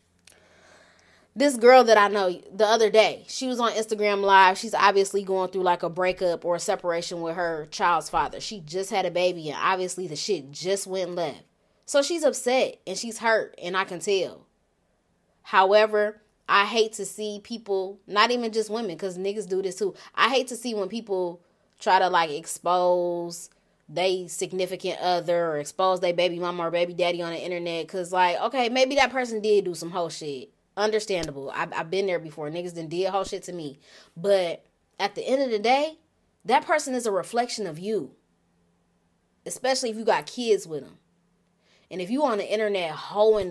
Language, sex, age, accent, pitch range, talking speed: English, female, 20-39, American, 175-230 Hz, 195 wpm